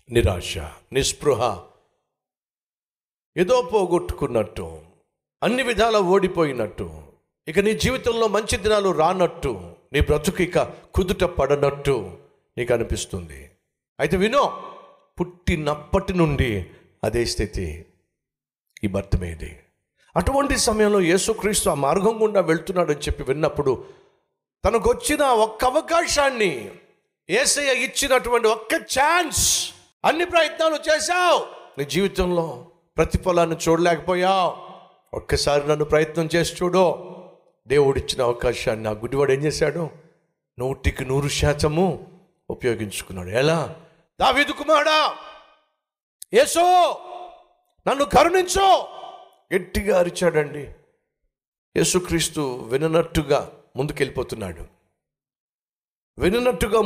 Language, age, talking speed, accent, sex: Telugu, 50-69, 80 wpm, native, male